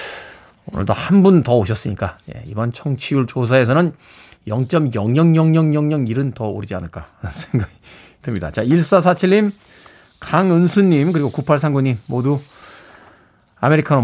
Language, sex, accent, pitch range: Korean, male, native, 125-190 Hz